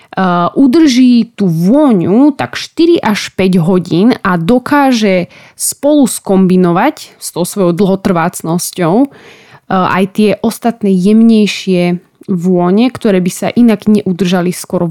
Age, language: 20-39, Slovak